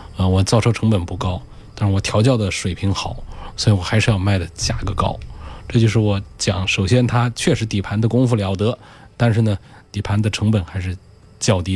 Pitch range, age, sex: 100-120 Hz, 20-39, male